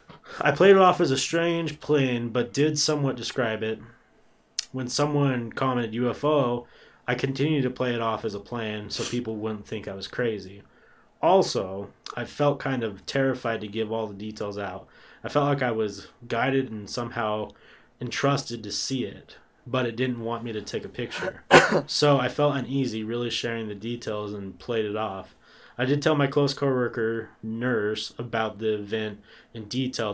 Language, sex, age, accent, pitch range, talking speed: English, male, 20-39, American, 105-130 Hz, 180 wpm